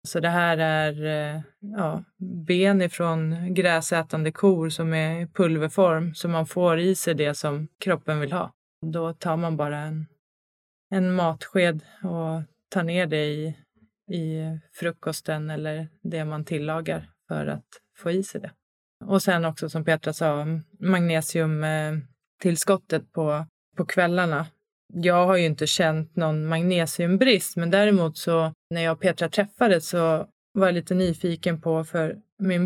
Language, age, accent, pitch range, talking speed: Swedish, 20-39, native, 155-185 Hz, 145 wpm